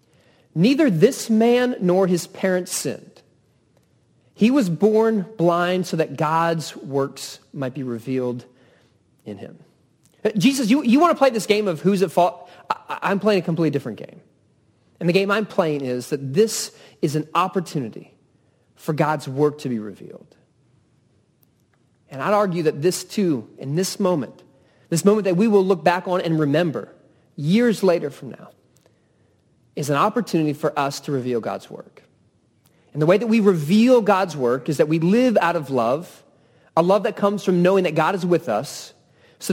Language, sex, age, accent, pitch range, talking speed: English, male, 40-59, American, 140-195 Hz, 175 wpm